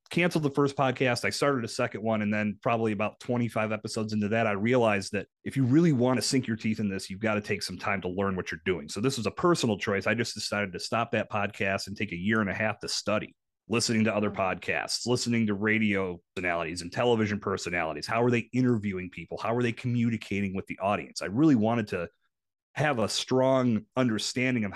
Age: 30-49